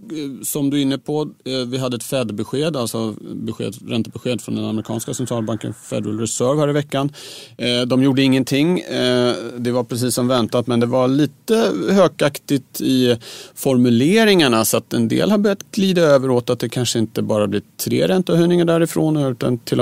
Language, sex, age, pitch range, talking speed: Swedish, male, 30-49, 110-140 Hz, 170 wpm